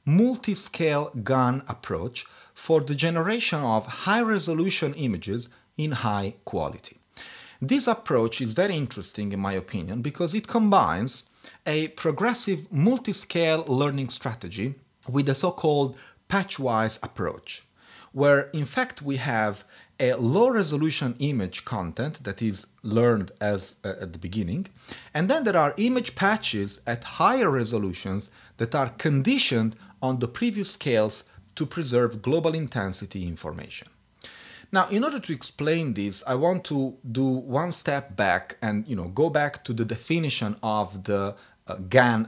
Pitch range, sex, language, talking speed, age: 110-165 Hz, male, English, 135 wpm, 40-59